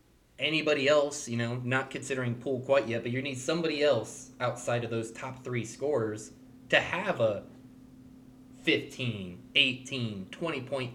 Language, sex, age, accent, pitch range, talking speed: English, male, 20-39, American, 110-135 Hz, 140 wpm